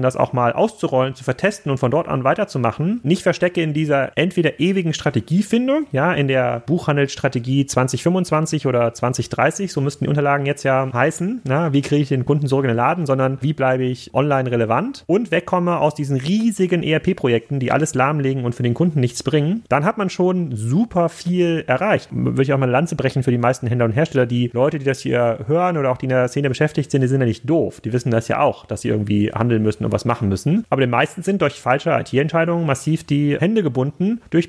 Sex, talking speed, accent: male, 225 wpm, German